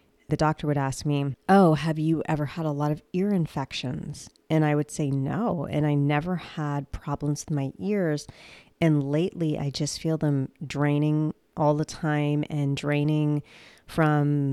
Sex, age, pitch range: female, 30-49, 140-160 Hz